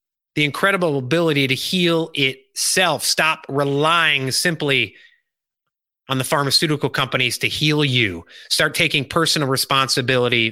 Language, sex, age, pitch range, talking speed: English, male, 30-49, 150-220 Hz, 115 wpm